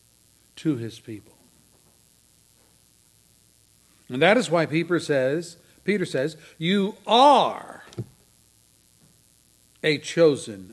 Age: 60-79